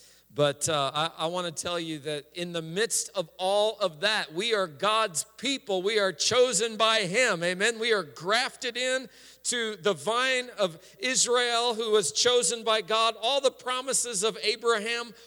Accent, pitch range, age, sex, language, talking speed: American, 155-255 Hz, 50-69, male, English, 175 wpm